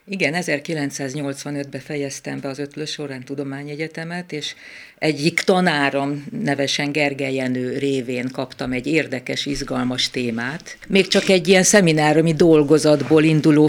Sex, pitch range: female, 135-160 Hz